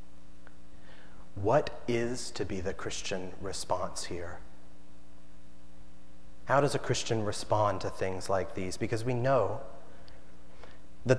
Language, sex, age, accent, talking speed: English, male, 30-49, American, 115 wpm